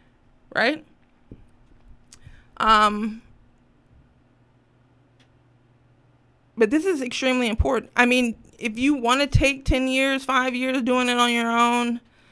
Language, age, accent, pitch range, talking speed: English, 20-39, American, 180-235 Hz, 115 wpm